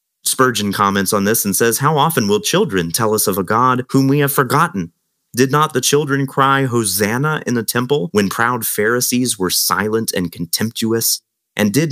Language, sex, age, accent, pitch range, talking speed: English, male, 30-49, American, 100-135 Hz, 185 wpm